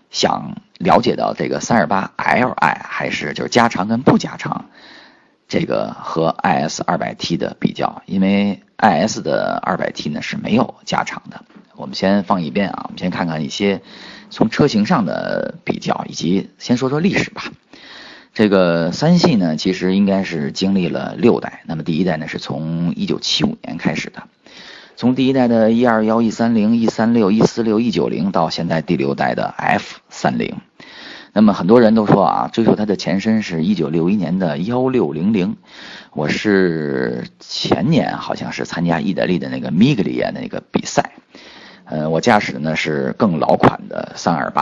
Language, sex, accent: Chinese, male, native